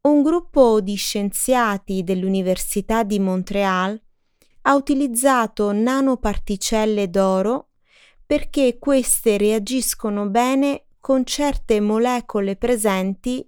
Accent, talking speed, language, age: native, 85 wpm, Italian, 20-39